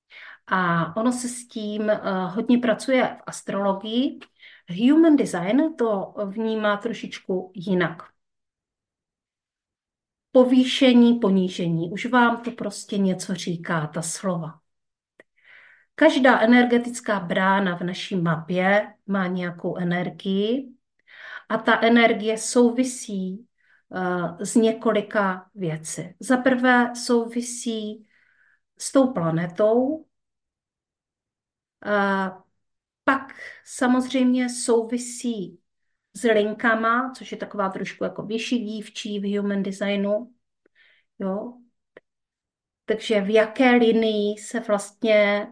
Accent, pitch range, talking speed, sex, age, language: native, 195-240 Hz, 85 wpm, female, 40-59, Czech